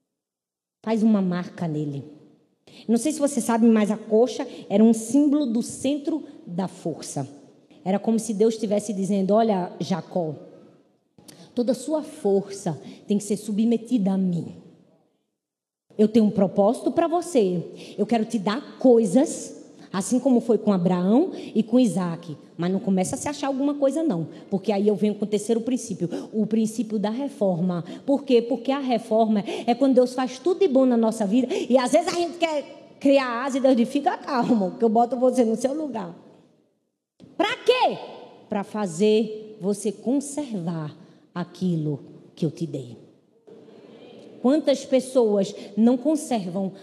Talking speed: 160 wpm